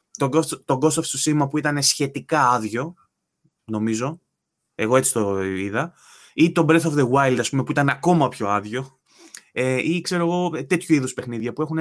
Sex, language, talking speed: male, Greek, 175 wpm